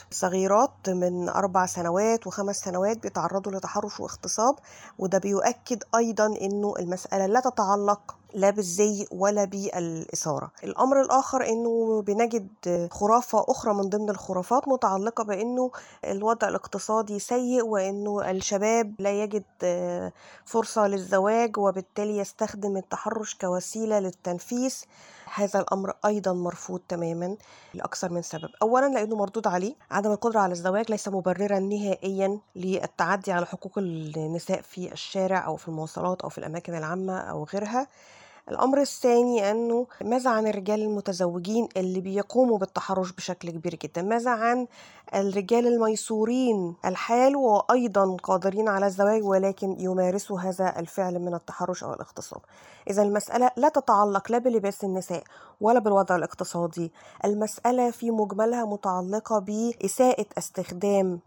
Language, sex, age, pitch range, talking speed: Arabic, female, 20-39, 185-225 Hz, 120 wpm